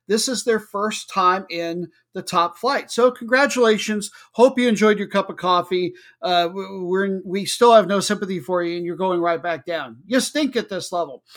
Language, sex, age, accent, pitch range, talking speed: English, male, 50-69, American, 170-215 Hz, 195 wpm